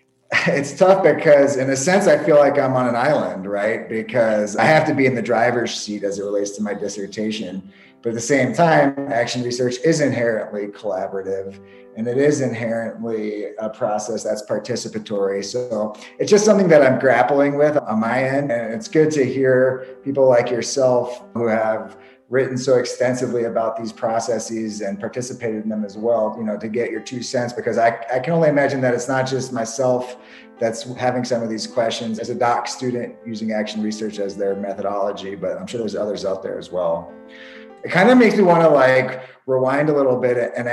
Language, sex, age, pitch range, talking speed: English, male, 30-49, 110-140 Hz, 200 wpm